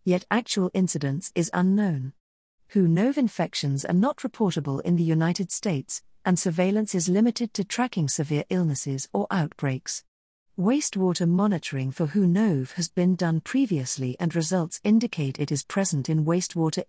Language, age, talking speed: English, 50-69, 145 wpm